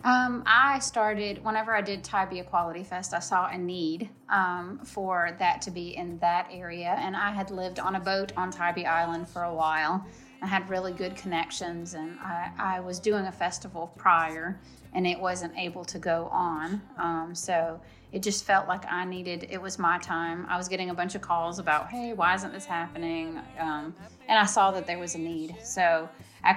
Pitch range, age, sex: 170-195 Hz, 30-49, female